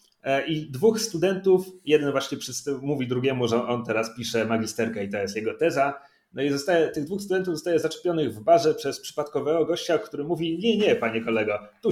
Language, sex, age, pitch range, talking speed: Polish, male, 30-49, 135-195 Hz, 180 wpm